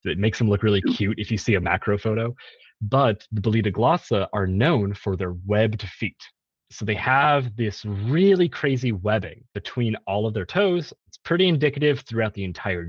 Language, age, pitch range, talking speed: English, 30-49, 105-145 Hz, 185 wpm